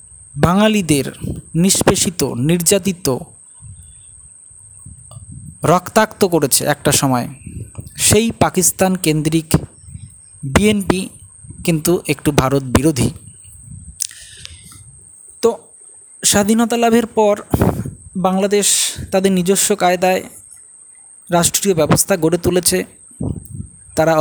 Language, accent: Bengali, native